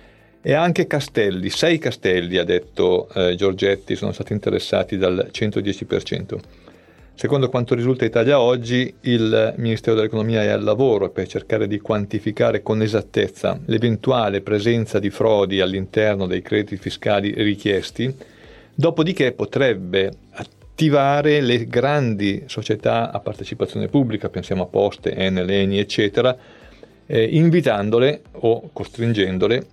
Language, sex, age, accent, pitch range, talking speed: Italian, male, 40-59, native, 100-130 Hz, 120 wpm